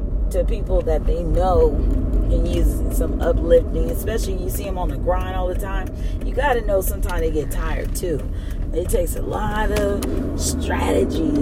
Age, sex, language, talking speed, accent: 30-49, female, English, 175 wpm, American